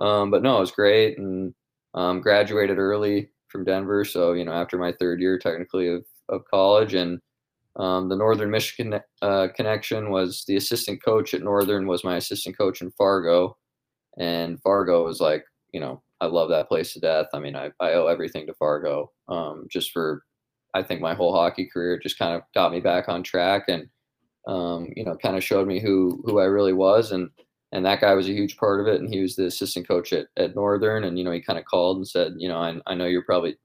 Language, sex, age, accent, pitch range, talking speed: English, male, 20-39, American, 90-100 Hz, 225 wpm